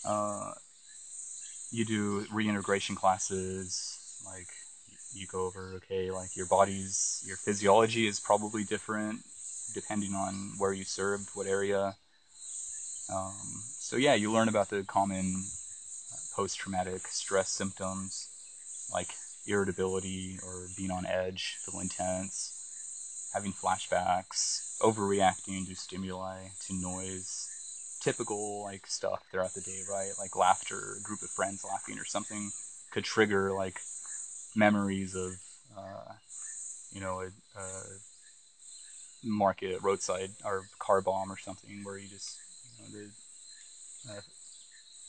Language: English